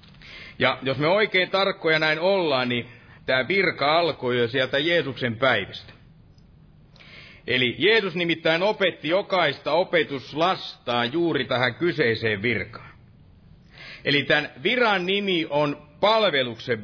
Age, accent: 50-69, native